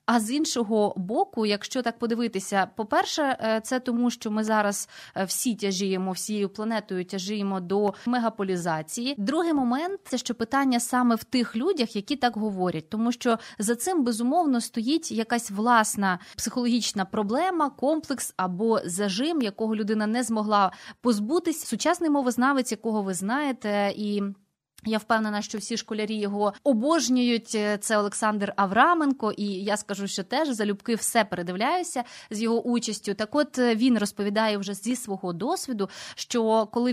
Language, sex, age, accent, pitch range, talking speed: Ukrainian, female, 20-39, native, 205-250 Hz, 145 wpm